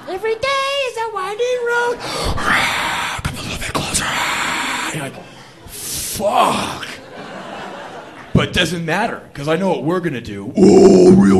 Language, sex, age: English, male, 40-59